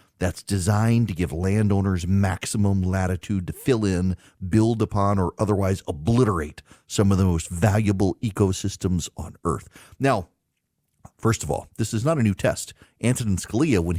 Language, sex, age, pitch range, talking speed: English, male, 40-59, 100-135 Hz, 155 wpm